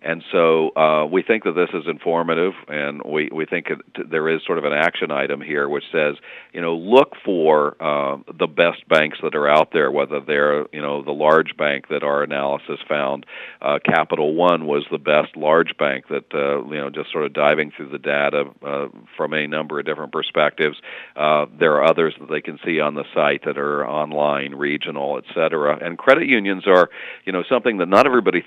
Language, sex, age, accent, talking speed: English, male, 50-69, American, 210 wpm